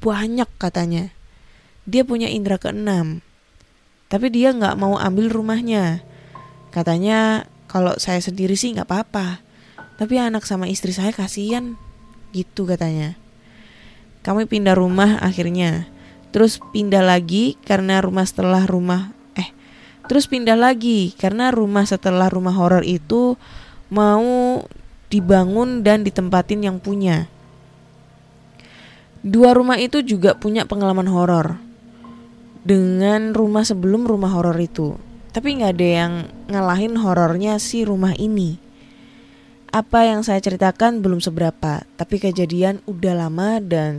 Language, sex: Indonesian, female